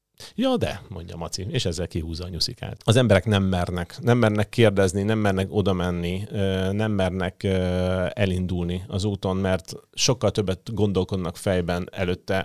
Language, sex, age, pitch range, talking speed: Hungarian, male, 30-49, 90-110 Hz, 145 wpm